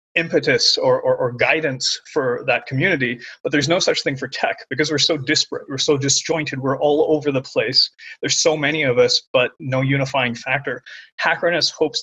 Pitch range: 130-155 Hz